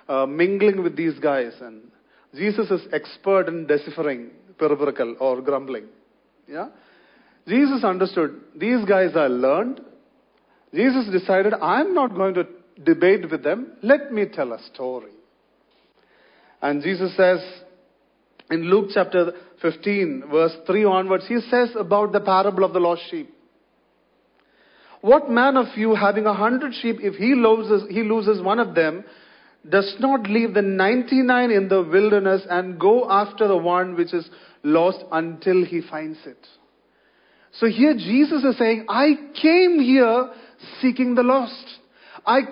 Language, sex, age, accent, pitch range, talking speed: English, male, 40-59, Indian, 180-250 Hz, 145 wpm